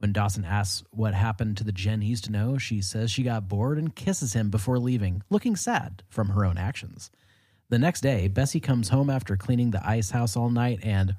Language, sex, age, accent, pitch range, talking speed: English, male, 30-49, American, 100-130 Hz, 225 wpm